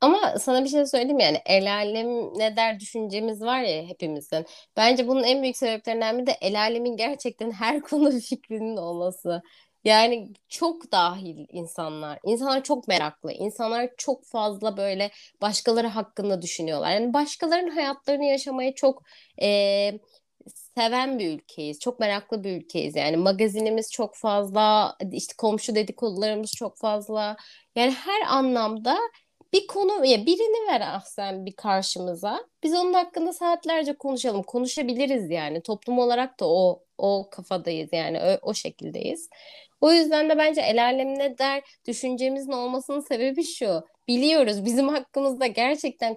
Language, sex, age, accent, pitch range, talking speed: Turkish, female, 30-49, native, 205-275 Hz, 140 wpm